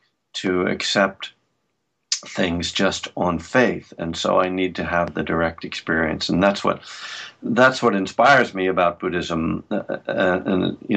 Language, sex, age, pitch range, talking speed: English, male, 50-69, 85-100 Hz, 150 wpm